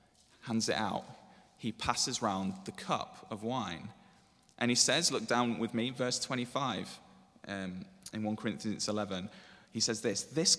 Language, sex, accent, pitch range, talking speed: English, male, British, 115-175 Hz, 160 wpm